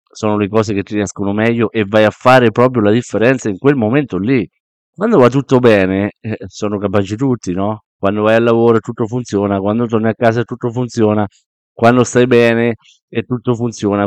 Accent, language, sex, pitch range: native, Italian, male, 100-120 Hz